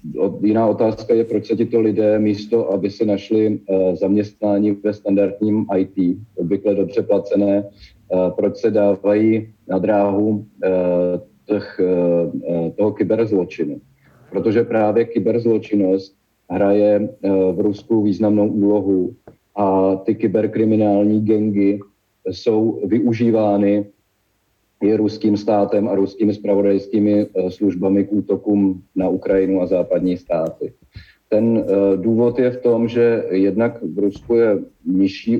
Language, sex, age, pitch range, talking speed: Czech, male, 50-69, 95-110 Hz, 120 wpm